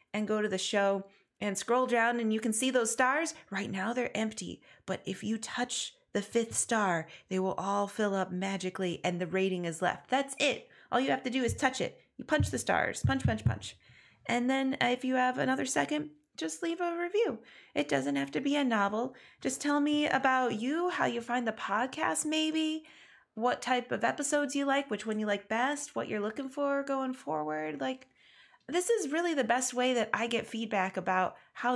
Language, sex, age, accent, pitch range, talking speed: English, female, 30-49, American, 190-260 Hz, 210 wpm